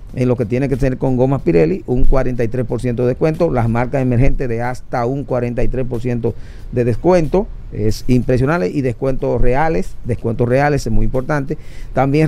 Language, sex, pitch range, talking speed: Spanish, male, 120-150 Hz, 160 wpm